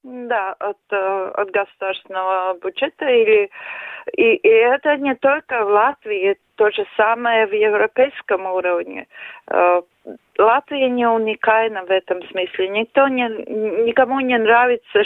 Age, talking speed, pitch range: 40-59, 110 wpm, 205-275 Hz